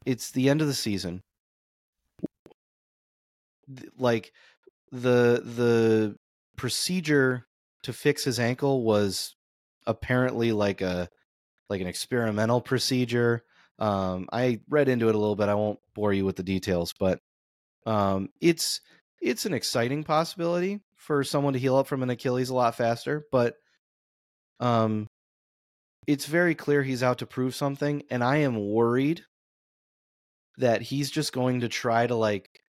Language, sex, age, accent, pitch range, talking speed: English, male, 30-49, American, 110-140 Hz, 140 wpm